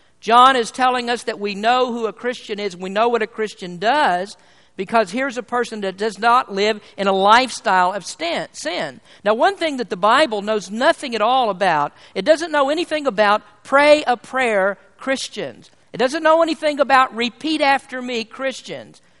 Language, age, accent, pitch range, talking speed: English, 50-69, American, 210-280 Hz, 185 wpm